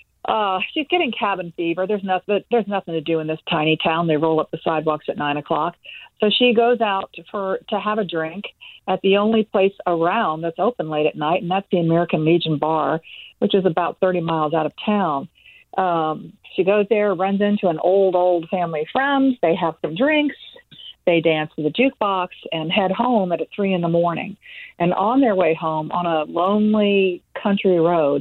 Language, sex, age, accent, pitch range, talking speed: English, female, 50-69, American, 165-205 Hz, 200 wpm